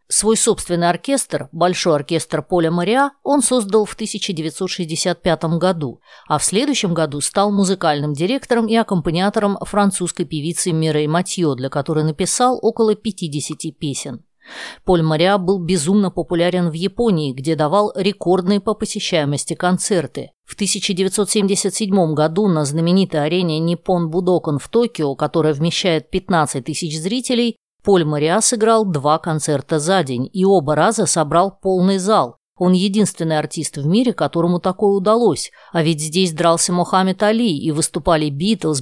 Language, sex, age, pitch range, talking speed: Russian, female, 20-39, 160-200 Hz, 140 wpm